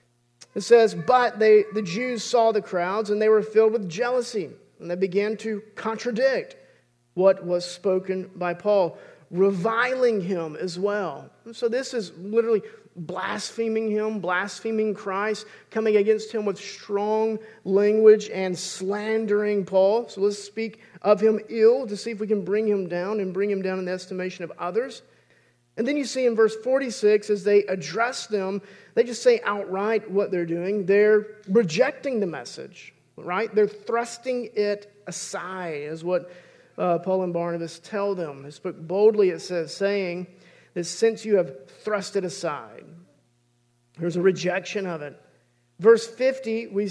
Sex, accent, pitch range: male, American, 185-220 Hz